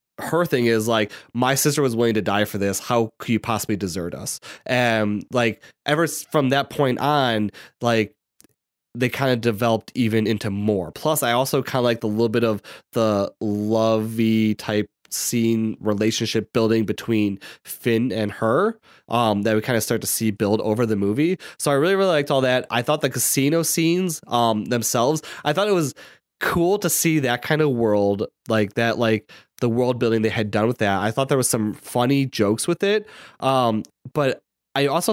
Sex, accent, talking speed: male, American, 195 wpm